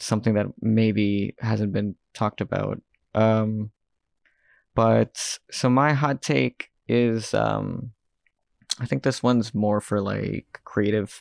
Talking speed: 125 wpm